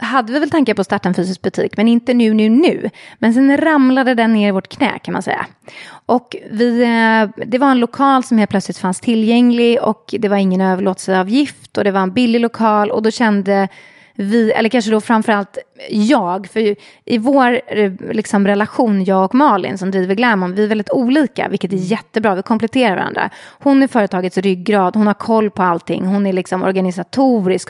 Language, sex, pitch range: Swedish, female, 200-255 Hz